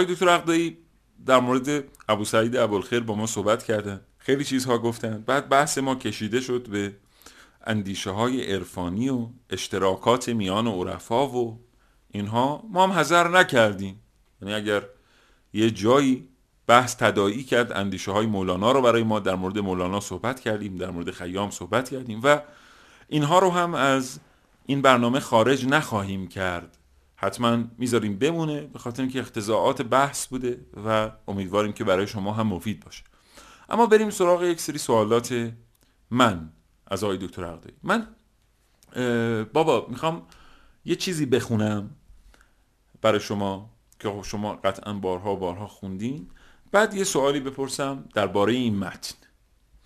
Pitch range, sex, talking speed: 100-135 Hz, male, 140 wpm